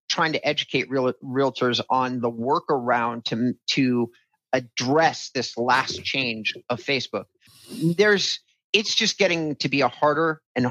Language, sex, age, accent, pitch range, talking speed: English, male, 30-49, American, 120-150 Hz, 140 wpm